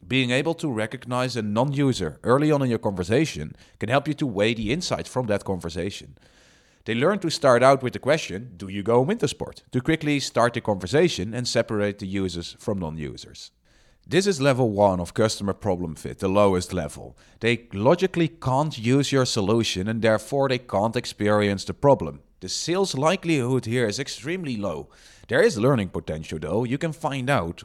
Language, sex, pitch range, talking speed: English, male, 100-140 Hz, 185 wpm